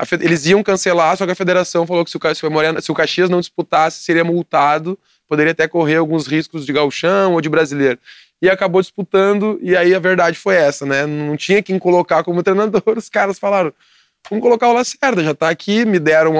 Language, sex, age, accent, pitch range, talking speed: Portuguese, male, 20-39, Brazilian, 160-195 Hz, 200 wpm